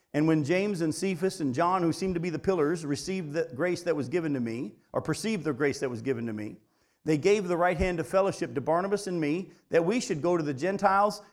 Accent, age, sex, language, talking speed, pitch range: American, 40-59, male, English, 255 wpm, 150-195 Hz